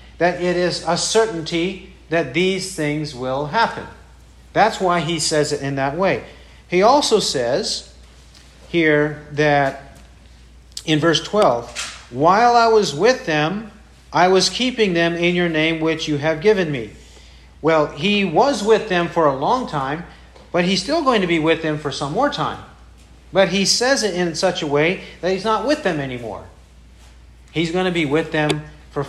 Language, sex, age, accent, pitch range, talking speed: English, male, 40-59, American, 130-185 Hz, 175 wpm